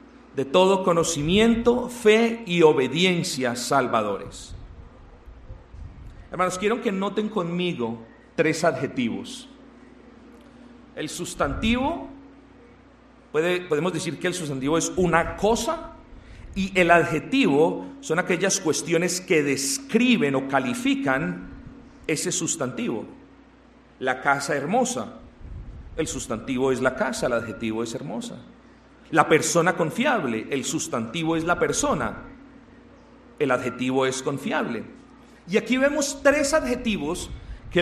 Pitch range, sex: 160-250 Hz, male